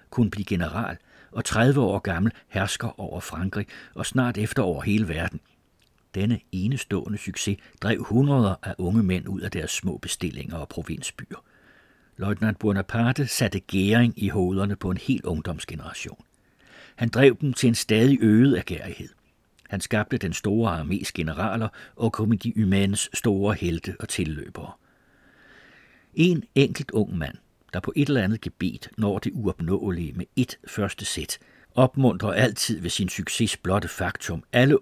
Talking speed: 150 wpm